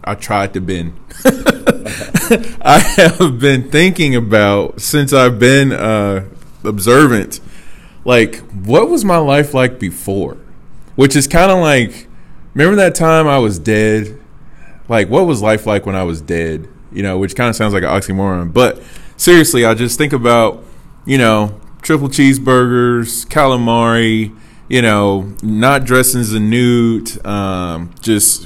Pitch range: 110-145 Hz